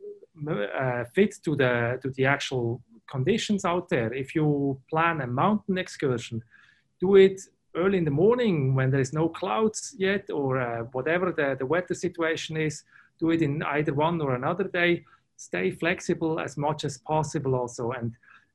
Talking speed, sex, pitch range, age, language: 170 wpm, male, 130-180 Hz, 30-49, English